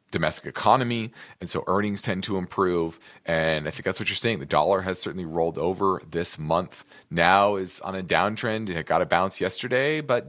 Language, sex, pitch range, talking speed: English, male, 90-115 Hz, 200 wpm